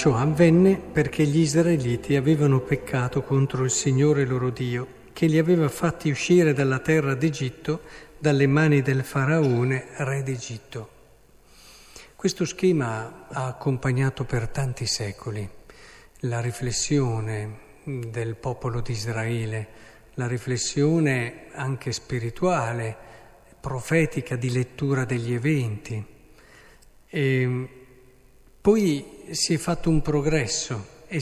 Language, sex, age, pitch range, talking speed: Italian, male, 50-69, 125-160 Hz, 110 wpm